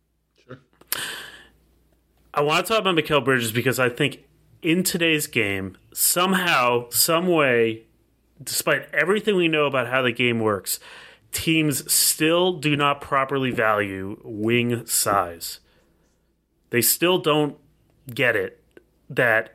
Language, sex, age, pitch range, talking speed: English, male, 30-49, 120-170 Hz, 120 wpm